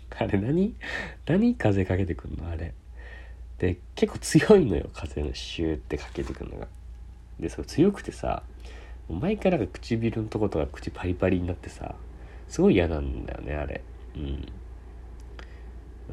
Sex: male